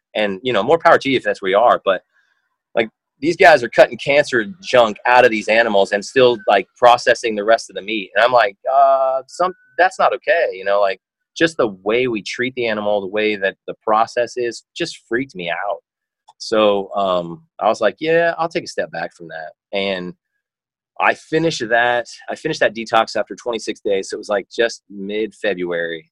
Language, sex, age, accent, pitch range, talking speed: English, male, 30-49, American, 90-125 Hz, 210 wpm